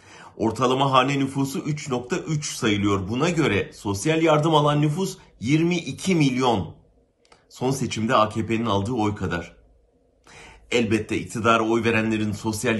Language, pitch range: Turkish, 100-150 Hz